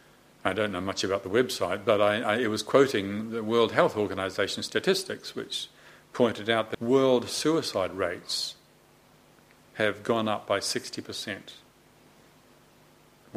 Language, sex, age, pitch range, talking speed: English, male, 50-69, 100-130 Hz, 125 wpm